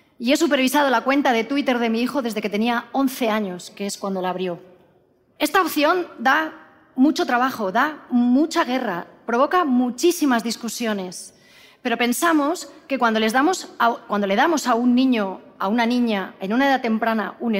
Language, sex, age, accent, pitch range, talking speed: Spanish, female, 30-49, Spanish, 215-280 Hz, 175 wpm